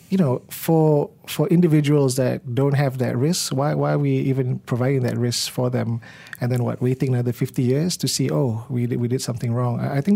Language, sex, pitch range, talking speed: English, male, 120-145 Hz, 220 wpm